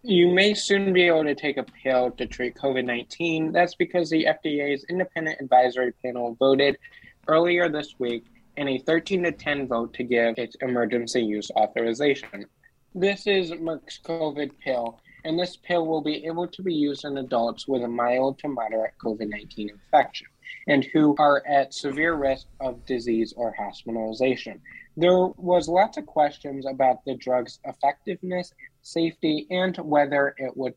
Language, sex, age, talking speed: English, male, 20-39, 160 wpm